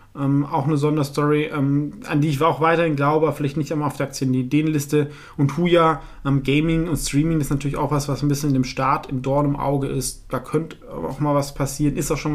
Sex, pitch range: male, 130-150 Hz